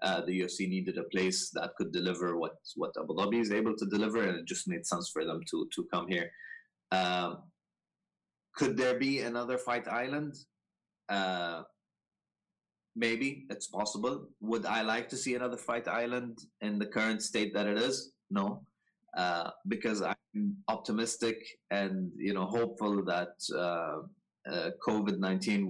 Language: Arabic